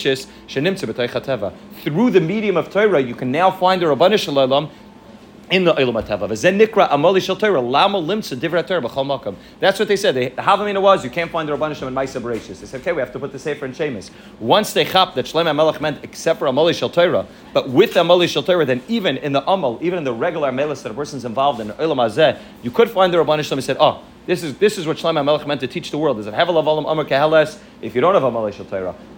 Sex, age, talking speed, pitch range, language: male, 40-59, 195 wpm, 135-185 Hz, English